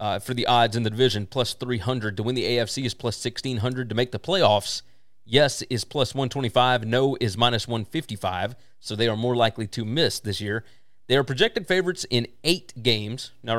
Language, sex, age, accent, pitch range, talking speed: English, male, 30-49, American, 115-135 Hz, 200 wpm